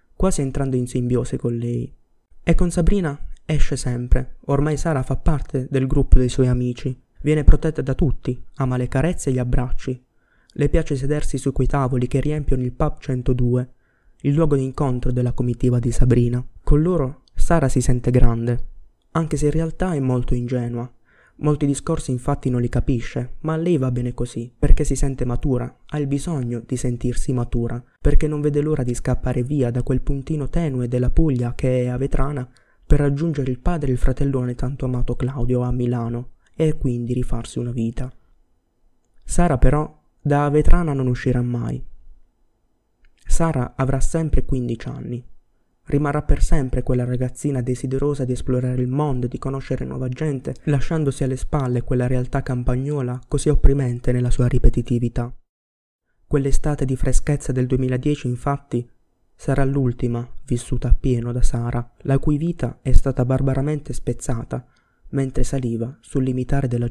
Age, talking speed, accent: 20-39, 160 wpm, native